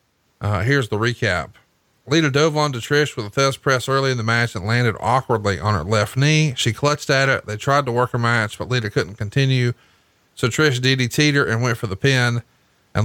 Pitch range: 115-135 Hz